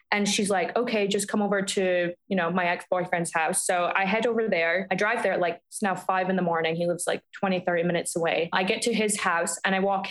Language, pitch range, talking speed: English, 185-215 Hz, 260 wpm